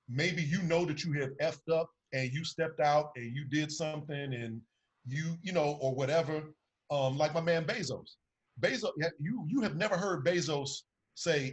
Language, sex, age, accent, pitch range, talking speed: English, male, 40-59, American, 130-165 Hz, 180 wpm